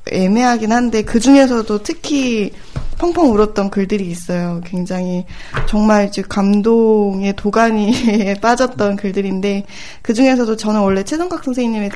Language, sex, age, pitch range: Korean, female, 20-39, 190-230 Hz